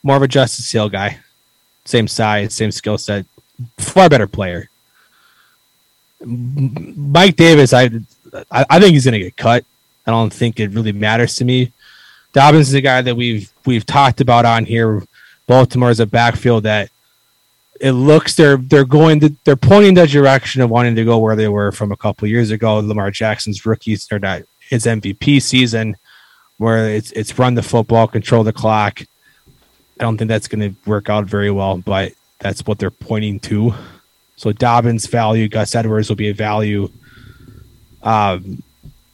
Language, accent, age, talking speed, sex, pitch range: English, American, 20-39, 175 wpm, male, 105-125 Hz